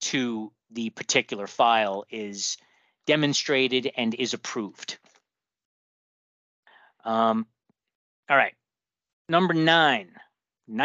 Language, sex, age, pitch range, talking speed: English, male, 30-49, 120-150 Hz, 75 wpm